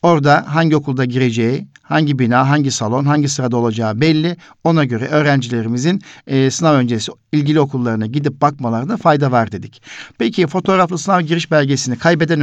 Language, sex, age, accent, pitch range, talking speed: Turkish, male, 60-79, native, 120-155 Hz, 150 wpm